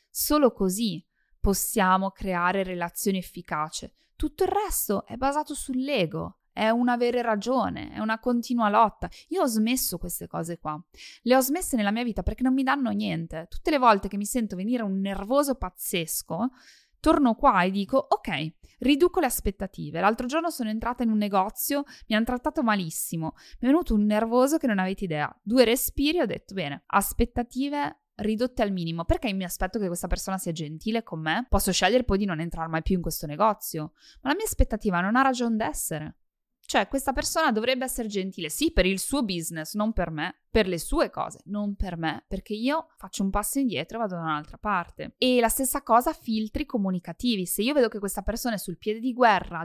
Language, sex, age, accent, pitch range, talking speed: Italian, female, 20-39, native, 185-255 Hz, 195 wpm